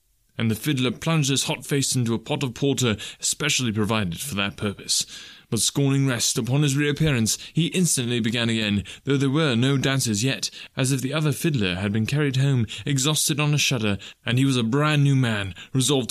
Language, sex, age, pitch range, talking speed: English, male, 20-39, 110-150 Hz, 200 wpm